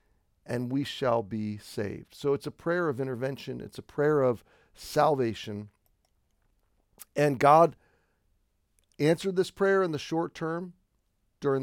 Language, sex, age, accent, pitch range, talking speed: English, male, 50-69, American, 115-140 Hz, 135 wpm